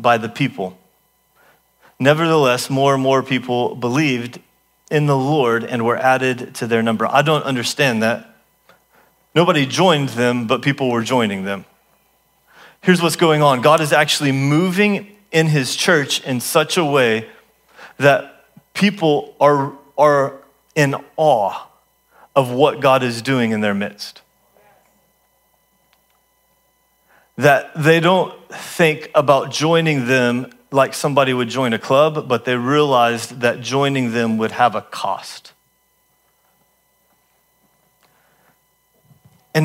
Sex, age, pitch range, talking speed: male, 30-49, 125-155 Hz, 125 wpm